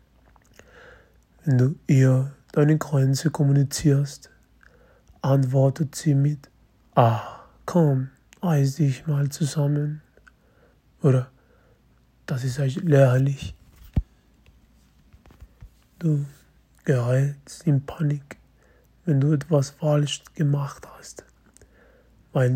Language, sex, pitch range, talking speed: German, male, 130-150 Hz, 80 wpm